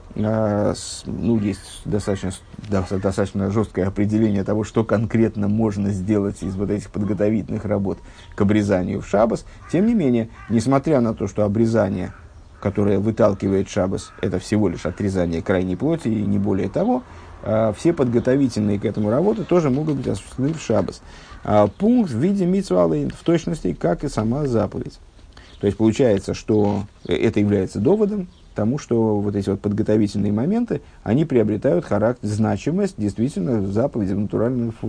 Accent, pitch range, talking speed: native, 100-140 Hz, 145 wpm